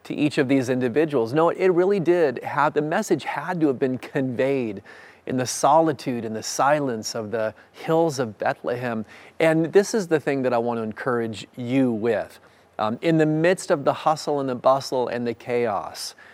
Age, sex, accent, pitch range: 40-59, male, American, 115-145 Hz